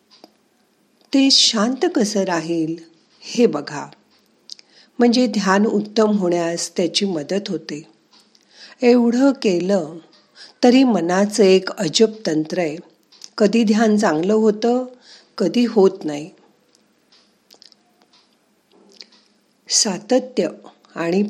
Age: 50-69